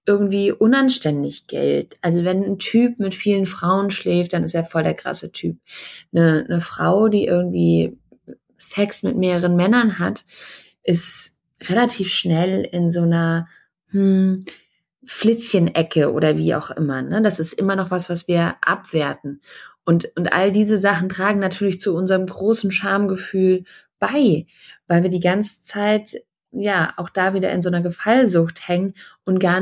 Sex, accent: female, German